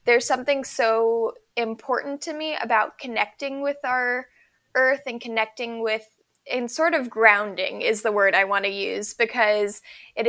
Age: 10-29